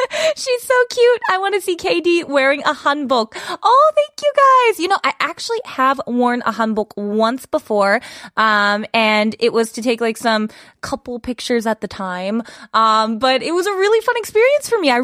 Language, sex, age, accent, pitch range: Korean, female, 20-39, American, 215-320 Hz